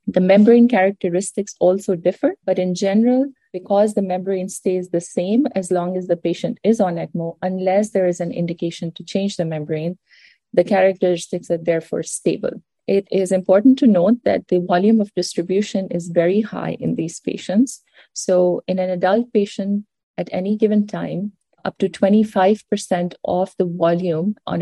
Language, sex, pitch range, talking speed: English, female, 175-205 Hz, 165 wpm